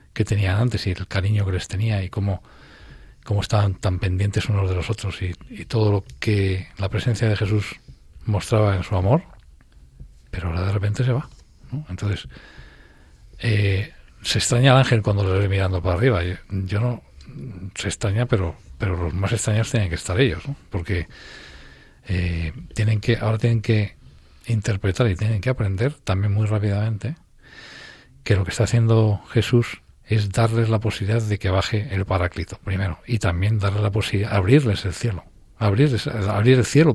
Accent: Spanish